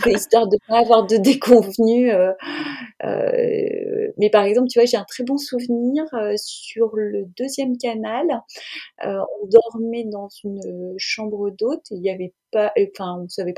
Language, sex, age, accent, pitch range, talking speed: French, female, 30-49, French, 185-235 Hz, 180 wpm